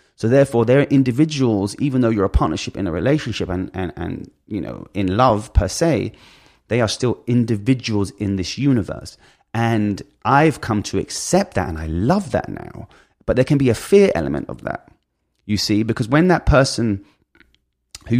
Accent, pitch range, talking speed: British, 95-130 Hz, 180 wpm